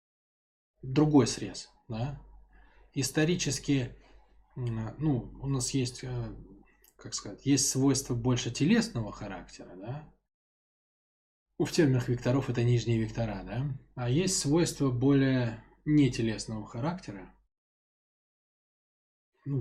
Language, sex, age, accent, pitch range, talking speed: Russian, male, 20-39, native, 110-140 Hz, 90 wpm